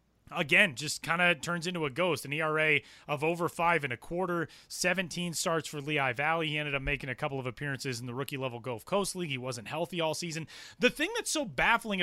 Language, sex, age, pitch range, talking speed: English, male, 30-49, 150-200 Hz, 230 wpm